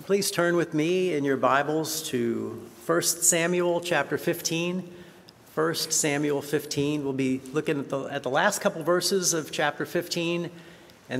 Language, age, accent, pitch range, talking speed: Dutch, 50-69, American, 125-165 Hz, 160 wpm